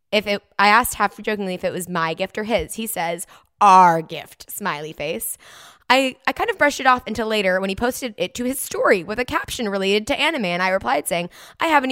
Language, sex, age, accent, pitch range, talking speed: English, female, 20-39, American, 185-255 Hz, 230 wpm